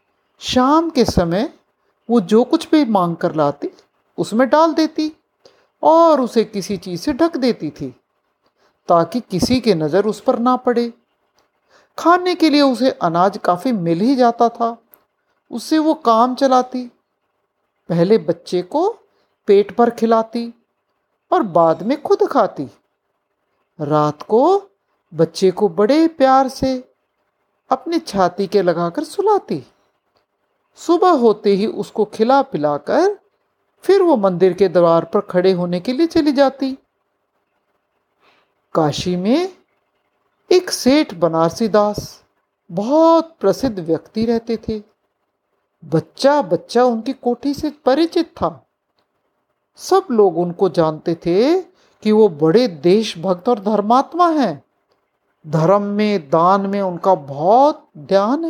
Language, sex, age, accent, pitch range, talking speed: Hindi, male, 60-79, native, 180-285 Hz, 125 wpm